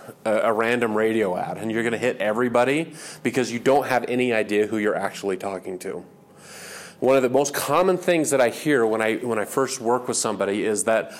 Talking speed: 220 wpm